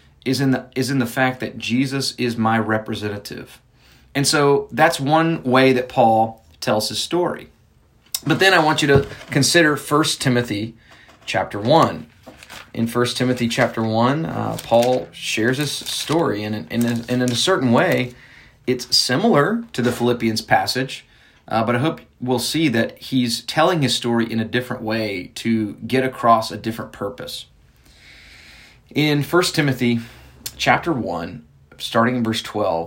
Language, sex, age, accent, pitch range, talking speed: English, male, 30-49, American, 115-130 Hz, 155 wpm